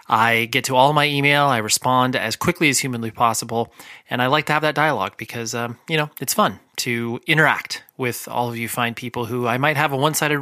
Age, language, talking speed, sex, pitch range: 30-49, English, 230 wpm, male, 115-145 Hz